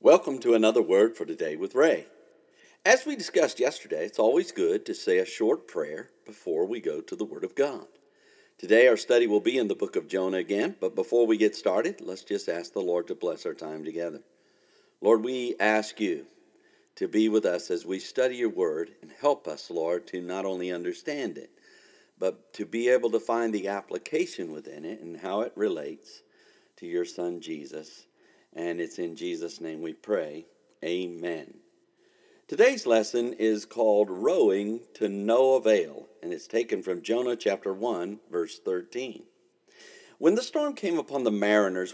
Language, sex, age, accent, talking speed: English, male, 50-69, American, 180 wpm